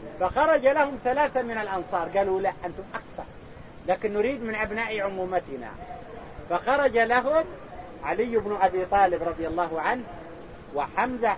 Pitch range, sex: 180-250 Hz, male